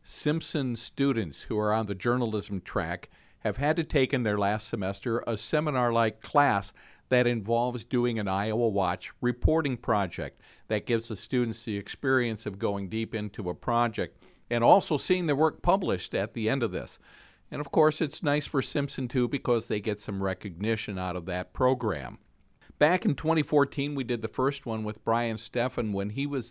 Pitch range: 105-135 Hz